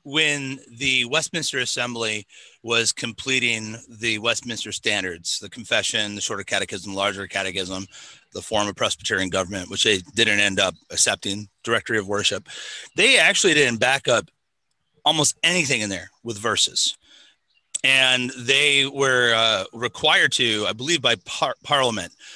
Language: English